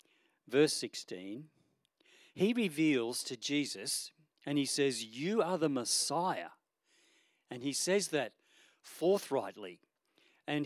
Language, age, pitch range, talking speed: English, 50-69, 130-175 Hz, 105 wpm